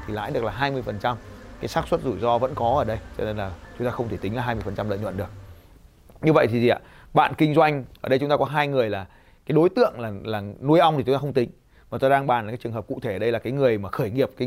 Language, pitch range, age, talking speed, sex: Vietnamese, 110-160 Hz, 20-39, 305 wpm, male